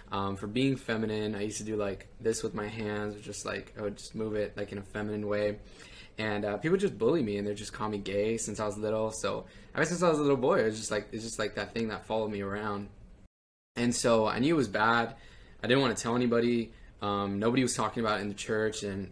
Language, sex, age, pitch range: English, male, 20-39, 100-110 Hz